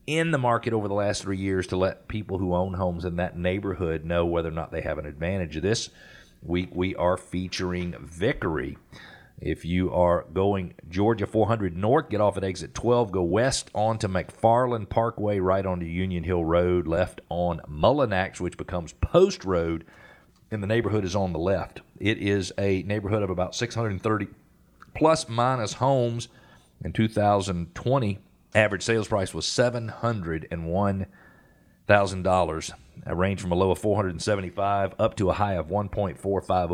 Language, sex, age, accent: English, male, 40-59, American